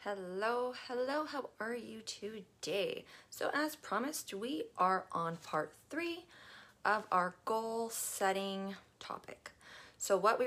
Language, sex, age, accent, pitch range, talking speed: English, female, 30-49, American, 185-235 Hz, 125 wpm